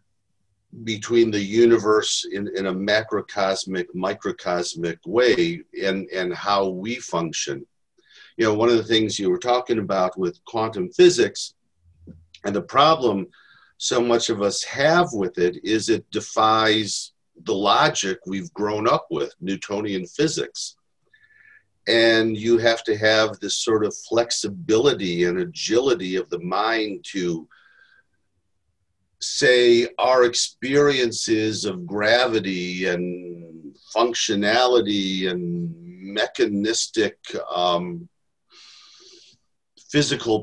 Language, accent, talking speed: English, American, 110 wpm